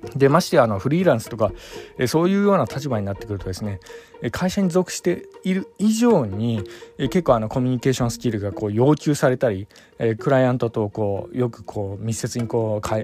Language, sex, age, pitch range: Japanese, male, 20-39, 105-145 Hz